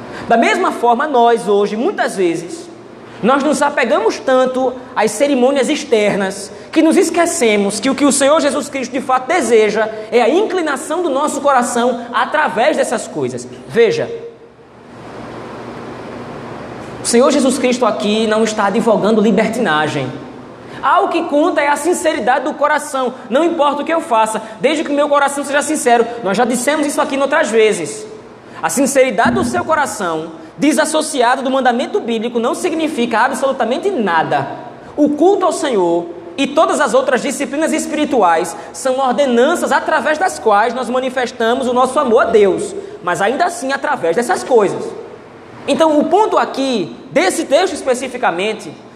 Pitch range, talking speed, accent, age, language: 225-300 Hz, 150 wpm, Brazilian, 20-39, Portuguese